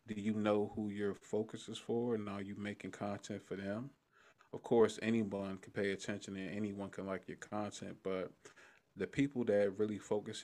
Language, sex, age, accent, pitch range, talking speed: English, male, 30-49, American, 95-105 Hz, 190 wpm